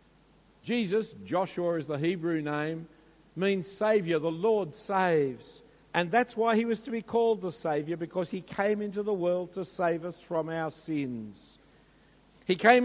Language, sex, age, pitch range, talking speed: English, male, 50-69, 165-215 Hz, 165 wpm